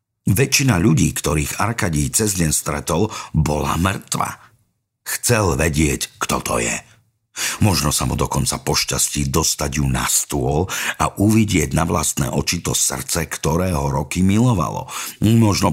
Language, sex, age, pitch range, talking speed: Slovak, male, 50-69, 75-100 Hz, 135 wpm